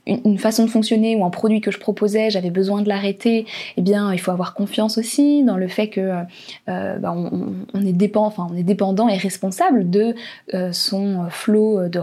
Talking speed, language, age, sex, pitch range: 200 wpm, French, 20-39, female, 185-220 Hz